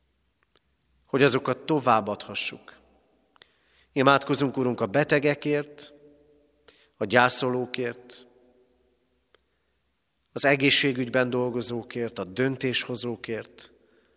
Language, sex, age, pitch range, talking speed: Hungarian, male, 40-59, 125-140 Hz, 60 wpm